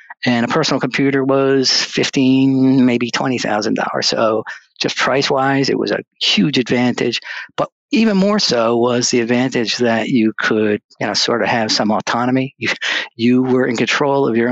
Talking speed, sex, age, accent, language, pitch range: 175 wpm, male, 50-69, American, English, 115-135 Hz